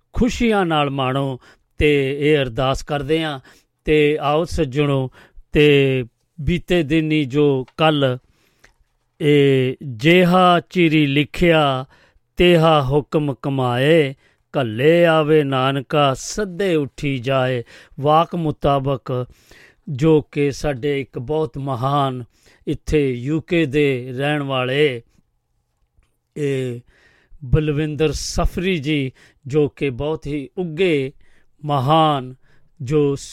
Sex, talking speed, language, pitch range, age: male, 95 wpm, Punjabi, 135-155 Hz, 50-69